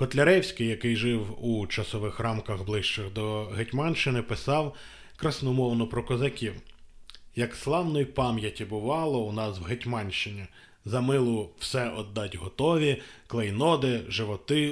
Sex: male